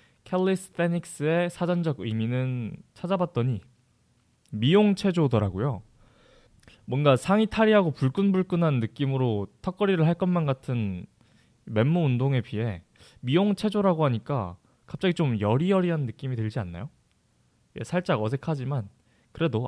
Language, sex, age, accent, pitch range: Korean, male, 20-39, native, 115-160 Hz